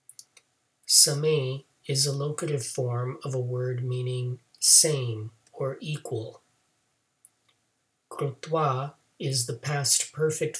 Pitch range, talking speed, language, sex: 125-145 Hz, 95 wpm, English, male